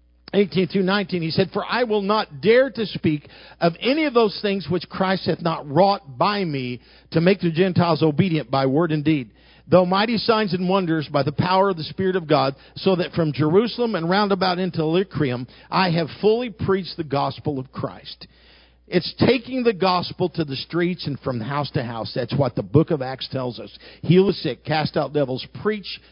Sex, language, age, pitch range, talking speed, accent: male, English, 50-69, 110-180 Hz, 205 wpm, American